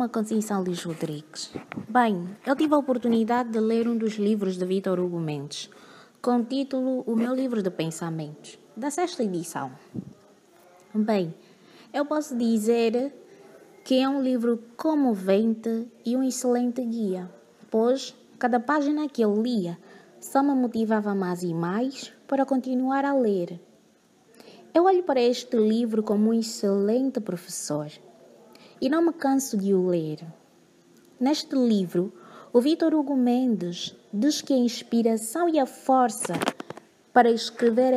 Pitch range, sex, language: 195-265 Hz, female, Portuguese